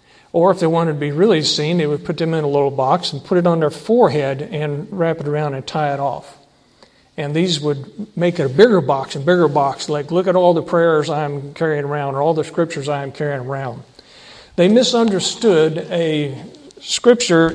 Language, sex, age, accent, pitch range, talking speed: English, male, 50-69, American, 145-180 Hz, 210 wpm